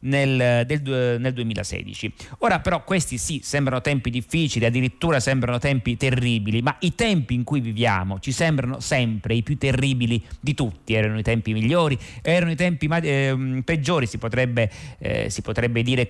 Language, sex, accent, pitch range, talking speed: Italian, male, native, 115-140 Hz, 155 wpm